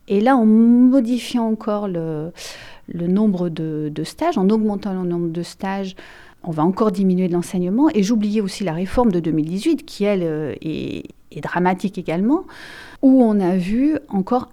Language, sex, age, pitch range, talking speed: French, female, 40-59, 185-235 Hz, 170 wpm